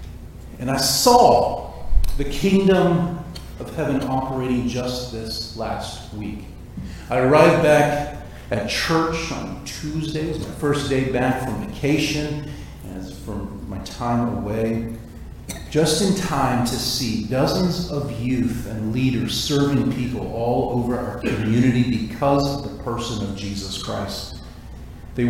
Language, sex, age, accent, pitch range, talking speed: English, male, 40-59, American, 110-150 Hz, 135 wpm